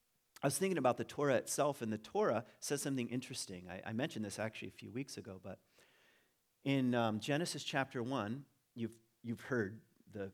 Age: 40-59